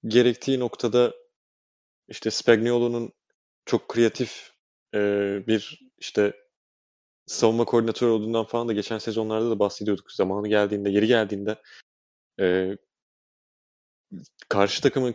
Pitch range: 100-120 Hz